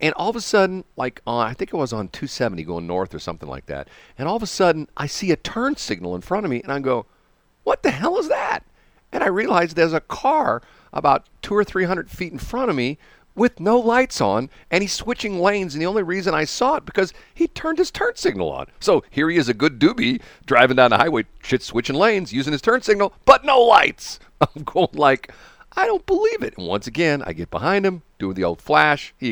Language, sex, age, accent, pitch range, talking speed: English, male, 50-69, American, 130-210 Hz, 240 wpm